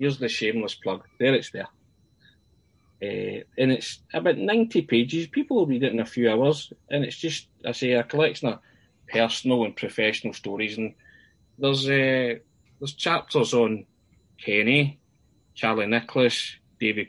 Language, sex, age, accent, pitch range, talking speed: English, male, 20-39, British, 110-140 Hz, 150 wpm